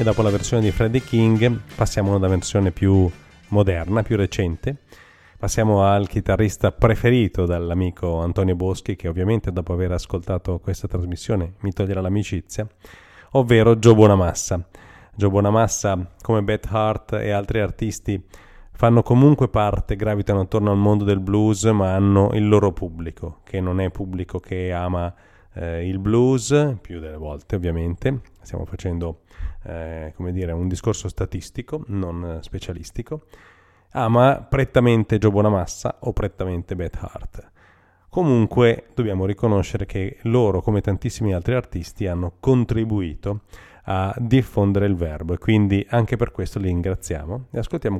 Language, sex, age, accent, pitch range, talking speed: Italian, male, 30-49, native, 90-110 Hz, 140 wpm